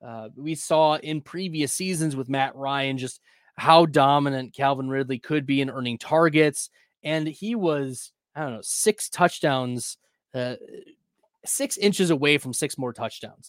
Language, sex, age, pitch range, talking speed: English, male, 20-39, 135-180 Hz, 155 wpm